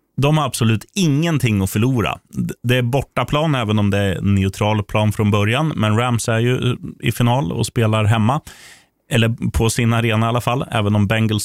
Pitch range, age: 100-125 Hz, 30-49